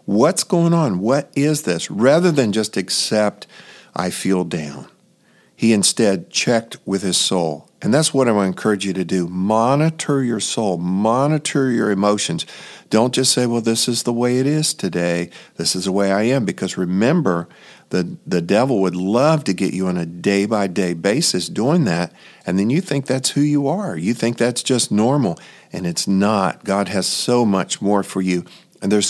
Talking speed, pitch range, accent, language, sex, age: 190 wpm, 95-125 Hz, American, English, male, 50-69